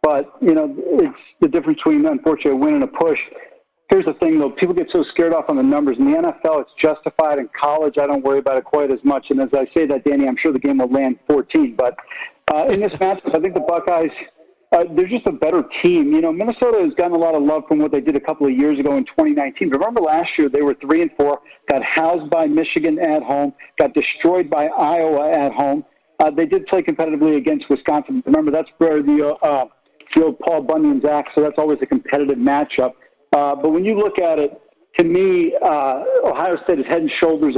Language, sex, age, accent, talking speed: English, male, 50-69, American, 235 wpm